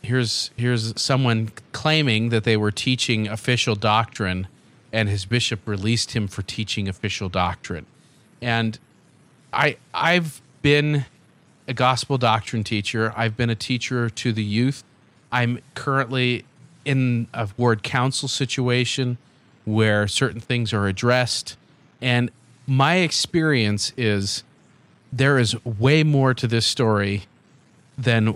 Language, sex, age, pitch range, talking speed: English, male, 40-59, 110-130 Hz, 125 wpm